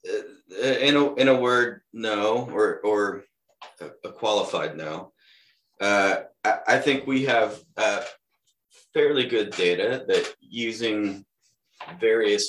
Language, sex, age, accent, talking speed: English, male, 30-49, American, 115 wpm